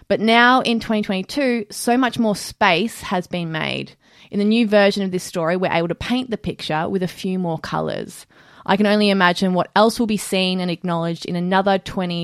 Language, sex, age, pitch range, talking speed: English, female, 20-39, 170-215 Hz, 210 wpm